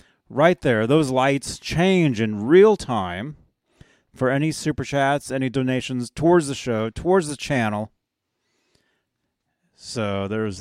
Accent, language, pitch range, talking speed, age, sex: American, English, 110-150 Hz, 125 wpm, 30-49, male